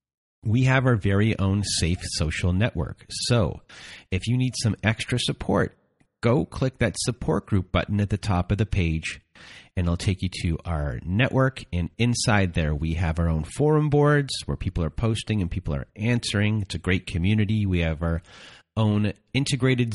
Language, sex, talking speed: English, male, 180 wpm